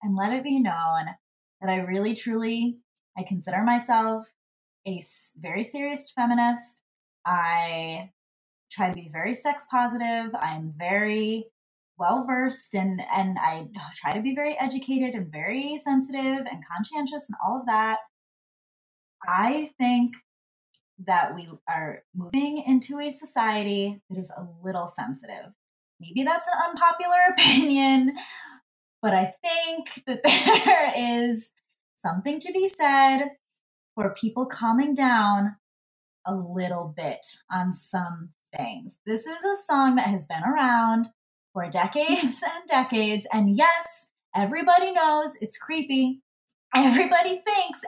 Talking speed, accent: 125 wpm, American